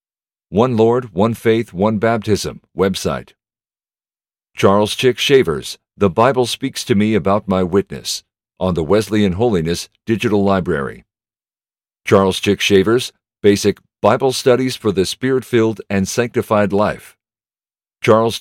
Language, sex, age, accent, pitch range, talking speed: English, male, 50-69, American, 100-120 Hz, 120 wpm